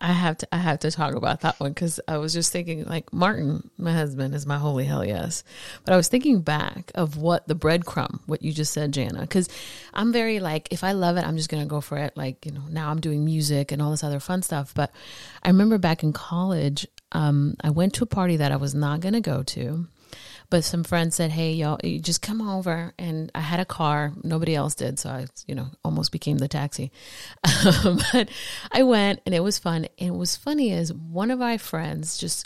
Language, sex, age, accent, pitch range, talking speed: English, female, 30-49, American, 150-185 Hz, 240 wpm